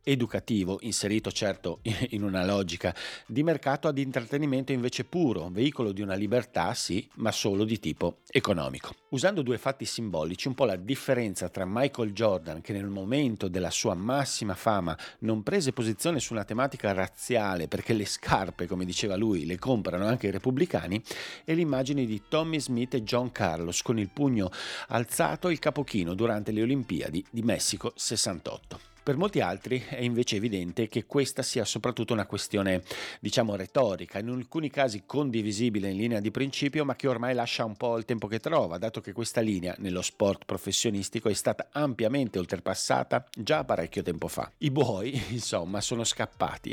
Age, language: 50-69, Italian